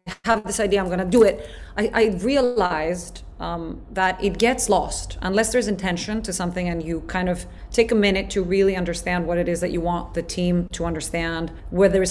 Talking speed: 210 wpm